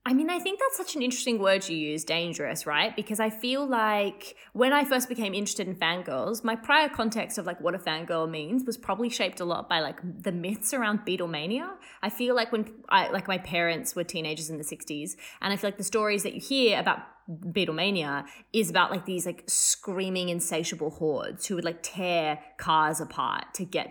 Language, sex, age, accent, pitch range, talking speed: English, female, 20-39, Australian, 165-225 Hz, 210 wpm